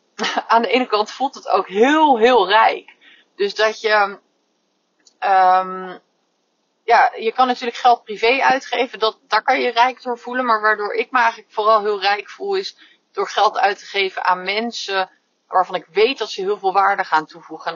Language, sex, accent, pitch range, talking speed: Dutch, female, Dutch, 180-250 Hz, 185 wpm